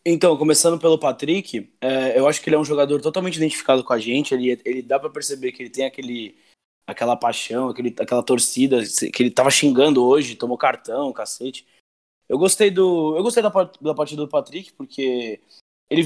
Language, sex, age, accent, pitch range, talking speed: Portuguese, male, 20-39, Brazilian, 120-155 Hz, 170 wpm